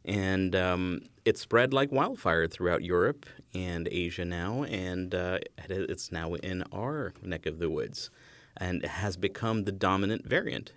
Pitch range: 90-120 Hz